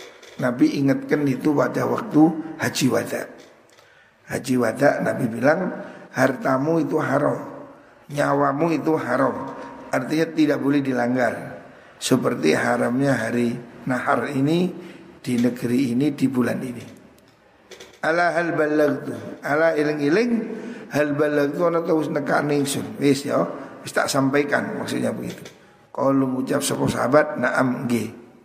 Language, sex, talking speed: Indonesian, male, 100 wpm